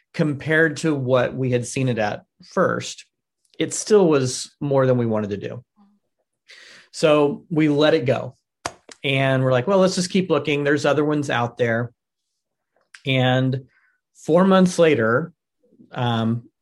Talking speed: 150 wpm